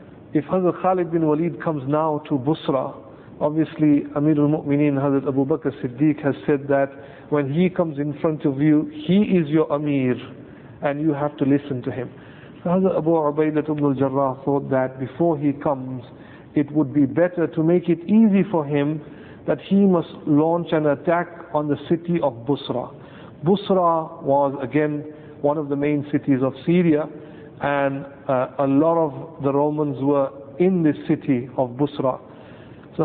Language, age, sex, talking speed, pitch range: English, 50-69, male, 165 wpm, 140-165 Hz